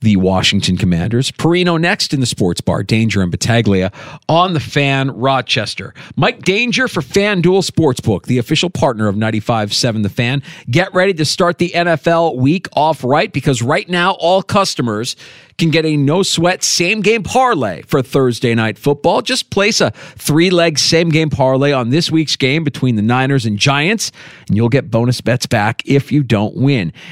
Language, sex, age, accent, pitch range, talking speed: English, male, 40-59, American, 115-160 Hz, 170 wpm